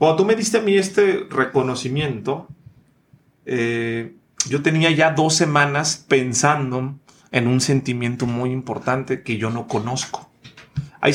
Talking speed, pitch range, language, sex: 135 wpm, 130-155 Hz, English, male